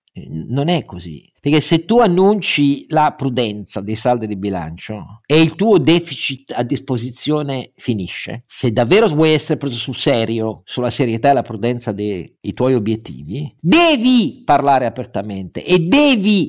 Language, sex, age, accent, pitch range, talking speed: Italian, male, 50-69, native, 120-170 Hz, 145 wpm